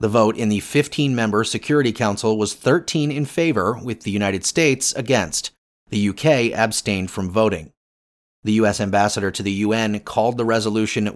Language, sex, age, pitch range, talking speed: English, male, 30-49, 100-130 Hz, 160 wpm